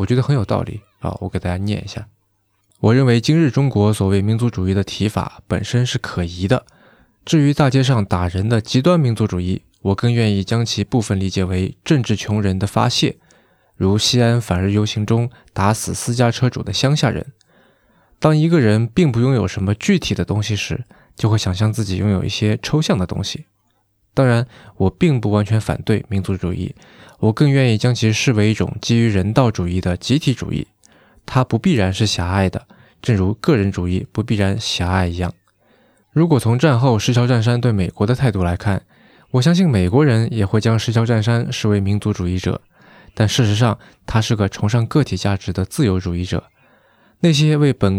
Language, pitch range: Chinese, 95-125 Hz